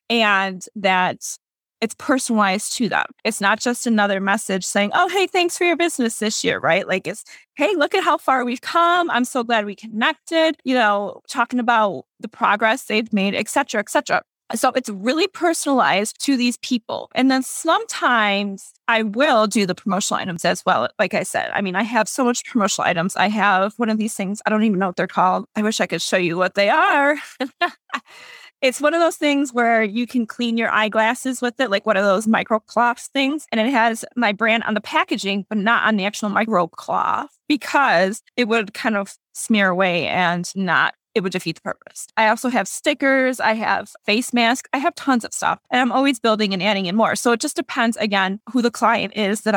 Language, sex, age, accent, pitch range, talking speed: English, female, 20-39, American, 205-260 Hz, 215 wpm